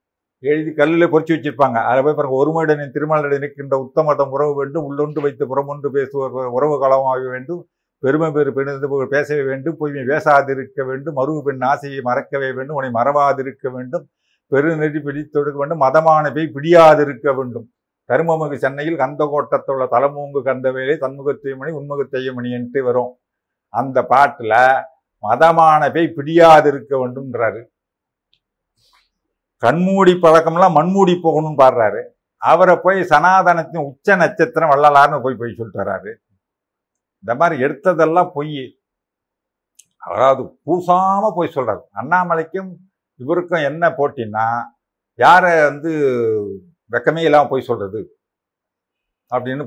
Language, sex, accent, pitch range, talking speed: Tamil, male, native, 130-160 Hz, 110 wpm